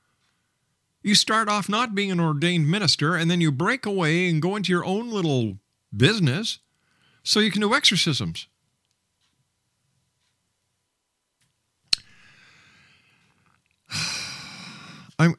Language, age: English, 50-69